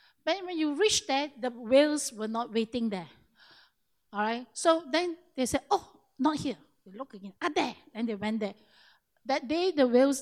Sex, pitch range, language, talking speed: female, 230-320 Hz, English, 190 wpm